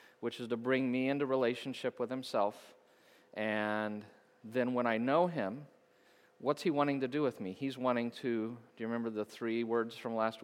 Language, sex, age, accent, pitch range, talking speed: English, male, 40-59, American, 110-125 Hz, 190 wpm